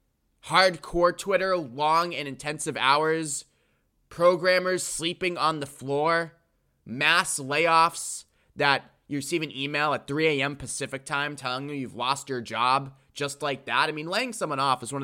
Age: 20-39